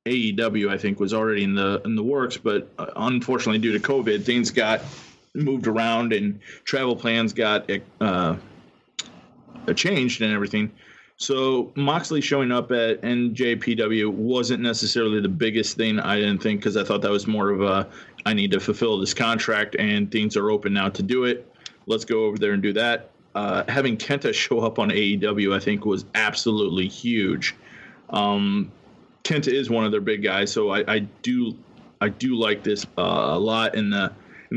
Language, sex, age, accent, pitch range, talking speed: English, male, 30-49, American, 105-120 Hz, 180 wpm